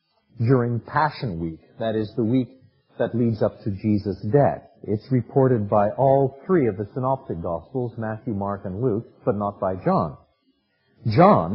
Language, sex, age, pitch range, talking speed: English, male, 50-69, 110-150 Hz, 160 wpm